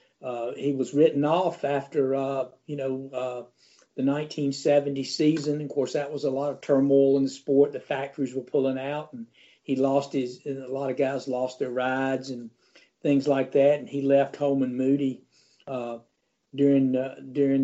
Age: 50-69